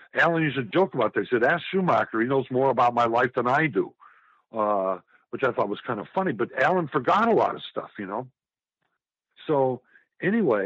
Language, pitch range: English, 110-155 Hz